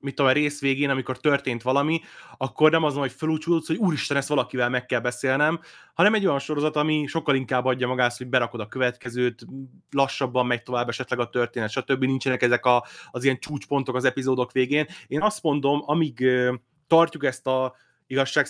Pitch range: 125-160 Hz